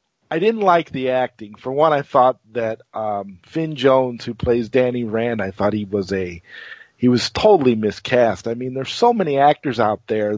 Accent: American